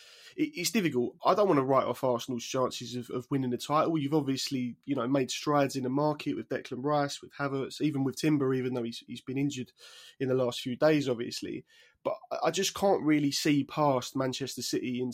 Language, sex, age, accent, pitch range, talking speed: English, male, 20-39, British, 125-150 Hz, 215 wpm